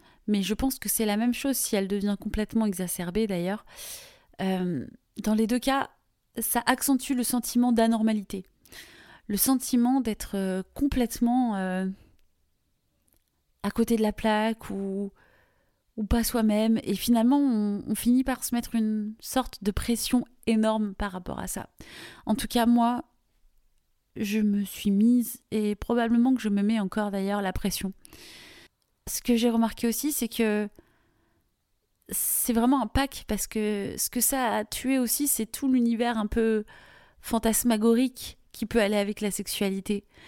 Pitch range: 205-245 Hz